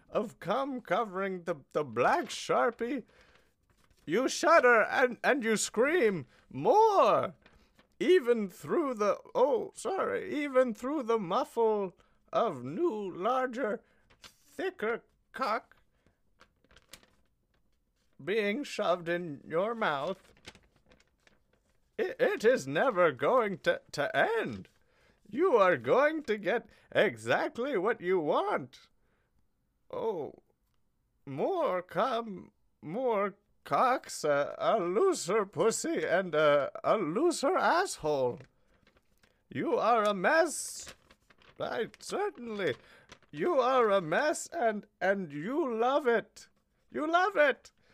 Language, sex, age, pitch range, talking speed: English, male, 30-49, 205-330 Hz, 100 wpm